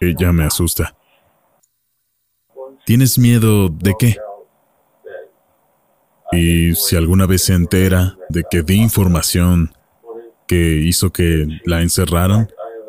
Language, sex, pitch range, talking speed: Spanish, male, 85-100 Hz, 100 wpm